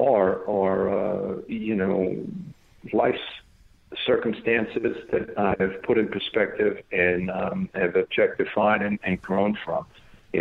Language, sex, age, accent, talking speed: English, male, 50-69, American, 125 wpm